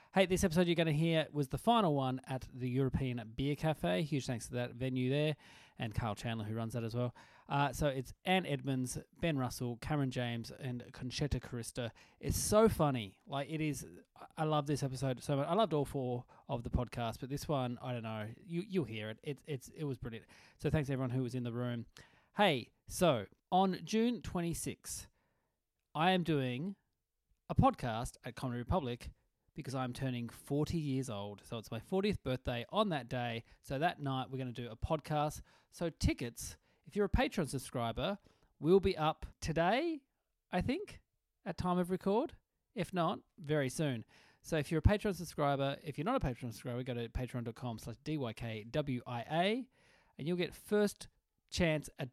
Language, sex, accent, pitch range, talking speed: English, male, Australian, 120-170 Hz, 190 wpm